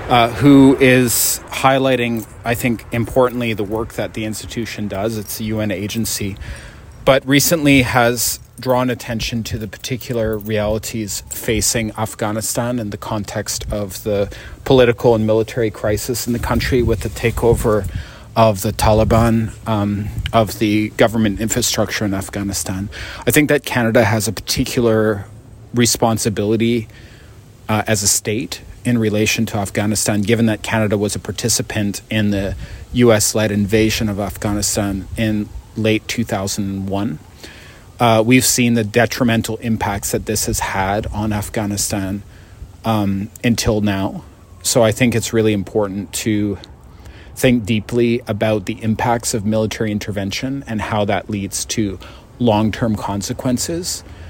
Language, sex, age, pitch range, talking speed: English, male, 30-49, 100-115 Hz, 135 wpm